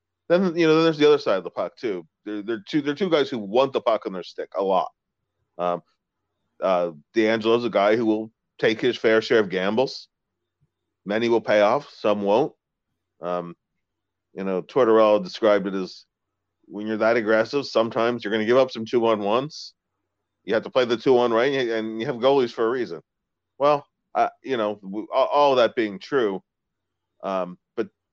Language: English